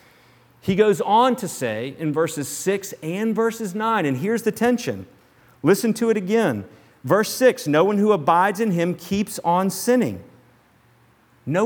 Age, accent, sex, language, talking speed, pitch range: 40-59, American, male, English, 160 wpm, 130-185 Hz